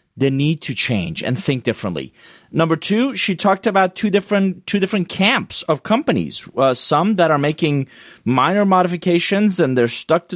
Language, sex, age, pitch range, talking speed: English, male, 30-49, 130-175 Hz, 175 wpm